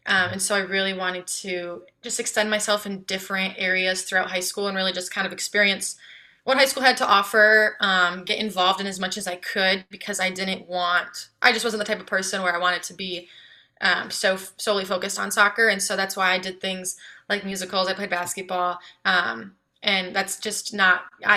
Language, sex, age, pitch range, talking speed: English, female, 20-39, 185-210 Hz, 215 wpm